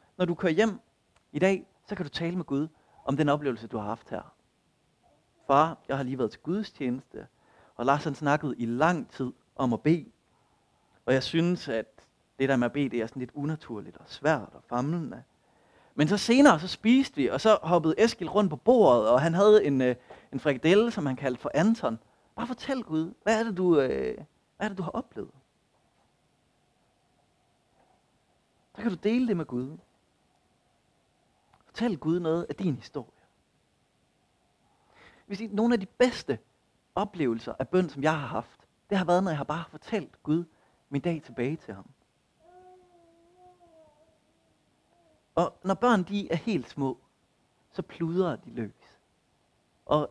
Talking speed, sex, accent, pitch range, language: 175 wpm, male, native, 140-215 Hz, Danish